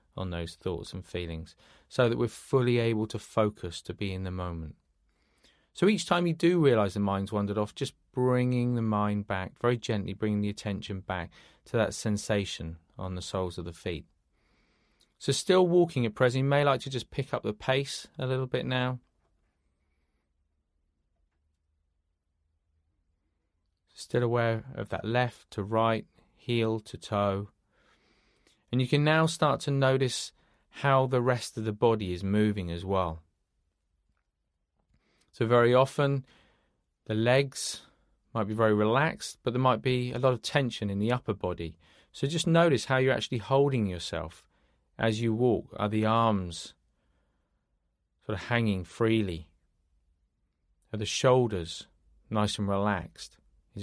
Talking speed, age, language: 155 wpm, 30-49, English